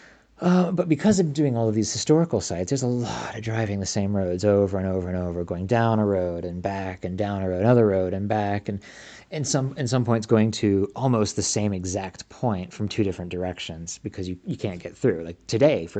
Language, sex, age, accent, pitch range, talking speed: English, male, 20-39, American, 95-115 Hz, 240 wpm